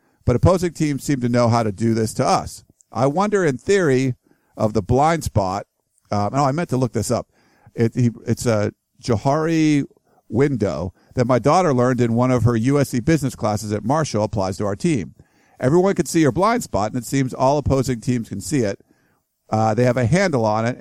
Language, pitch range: English, 105-135 Hz